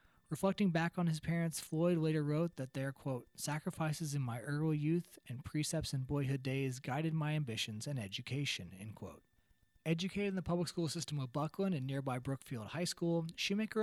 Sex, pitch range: male, 130-170 Hz